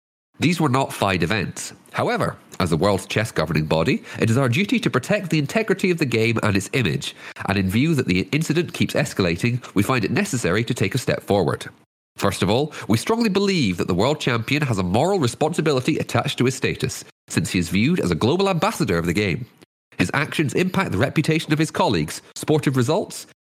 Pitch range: 100-160 Hz